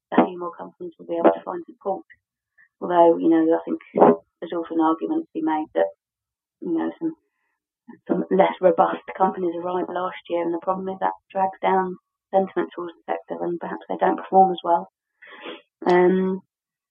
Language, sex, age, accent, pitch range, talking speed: English, female, 30-49, British, 120-185 Hz, 185 wpm